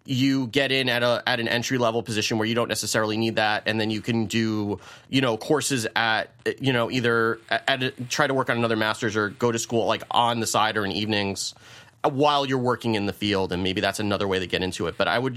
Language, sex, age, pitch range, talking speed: English, male, 30-49, 110-135 Hz, 250 wpm